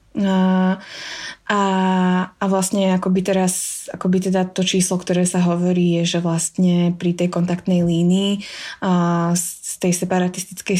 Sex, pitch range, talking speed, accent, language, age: female, 180-200 Hz, 145 wpm, native, Czech, 20-39